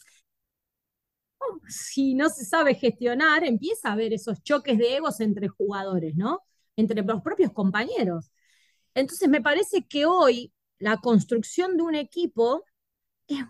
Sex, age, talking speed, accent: female, 20-39, 135 wpm, Argentinian